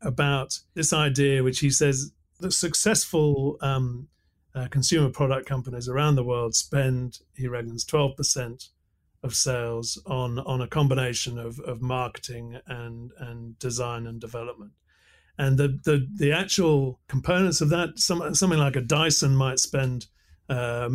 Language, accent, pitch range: English, British, 125-150 Hz